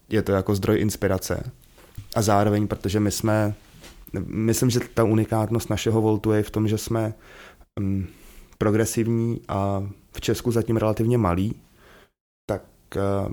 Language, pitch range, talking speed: Czech, 95-110 Hz, 130 wpm